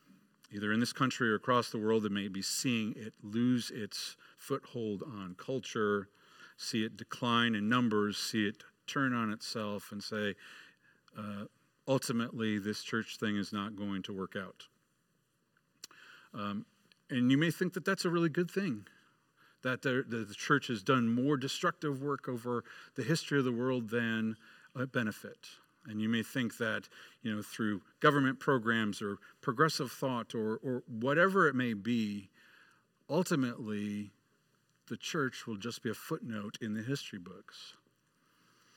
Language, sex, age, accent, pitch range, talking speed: English, male, 50-69, American, 105-140 Hz, 155 wpm